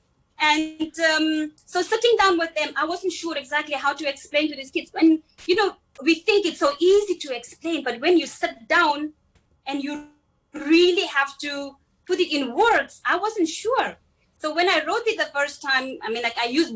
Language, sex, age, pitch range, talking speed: English, female, 20-39, 265-330 Hz, 205 wpm